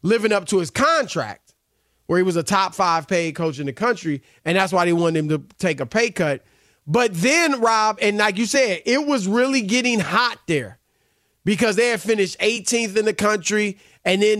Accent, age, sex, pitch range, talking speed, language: American, 30-49, male, 180-230 Hz, 210 wpm, English